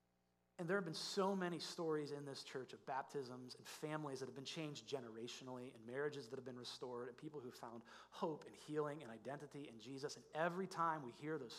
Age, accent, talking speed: 30-49, American, 215 wpm